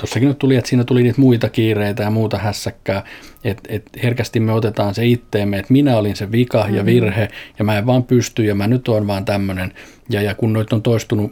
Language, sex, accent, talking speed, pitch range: Finnish, male, native, 230 wpm, 100-115 Hz